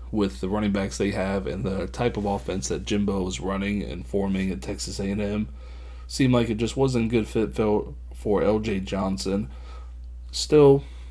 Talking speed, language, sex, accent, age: 175 wpm, English, male, American, 20-39